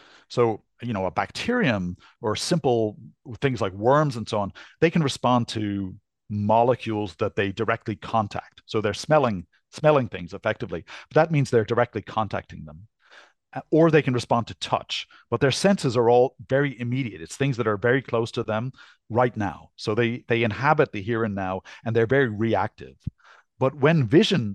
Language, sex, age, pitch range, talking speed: English, male, 40-59, 105-130 Hz, 180 wpm